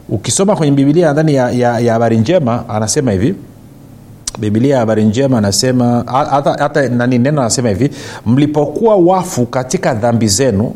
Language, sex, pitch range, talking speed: Swahili, male, 120-150 Hz, 135 wpm